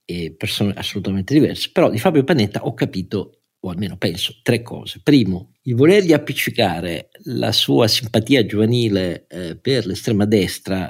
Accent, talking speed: native, 145 wpm